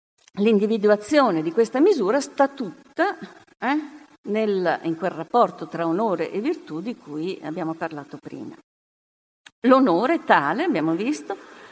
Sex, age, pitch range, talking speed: female, 50-69, 180-290 Hz, 120 wpm